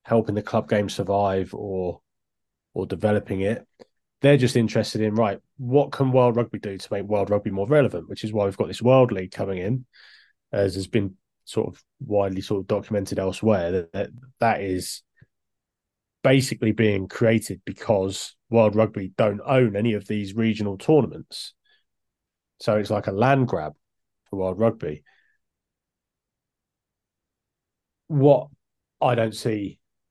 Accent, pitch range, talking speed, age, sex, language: British, 100-130 Hz, 150 wpm, 30-49, male, English